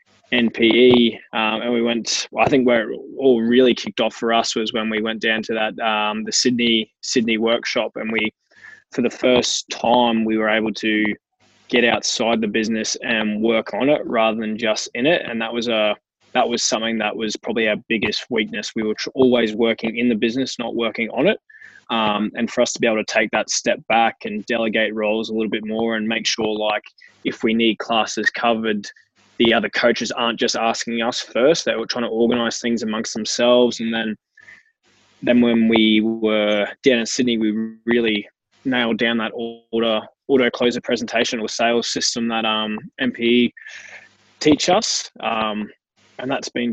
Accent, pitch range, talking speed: Australian, 110-120 Hz, 190 wpm